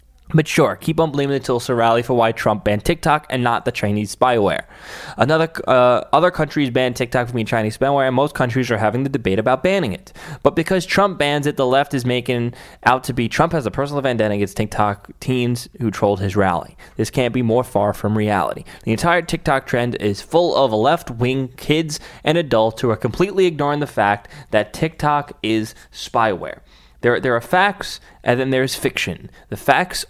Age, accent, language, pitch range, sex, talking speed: 20-39, American, English, 110-145 Hz, male, 200 wpm